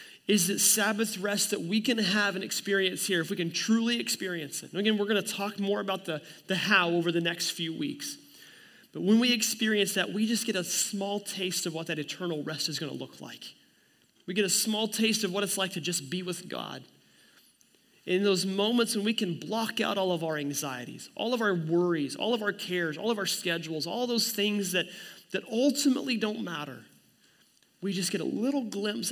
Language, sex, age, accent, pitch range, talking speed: English, male, 30-49, American, 165-205 Hz, 220 wpm